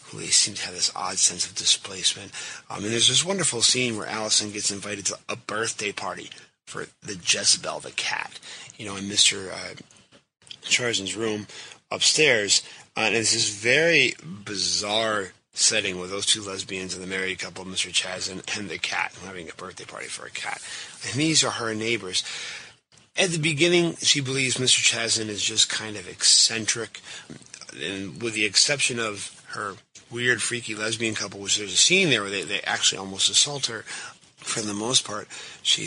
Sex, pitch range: male, 100-120 Hz